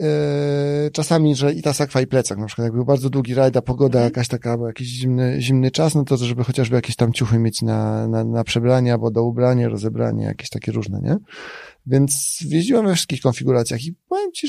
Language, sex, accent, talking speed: Polish, male, native, 205 wpm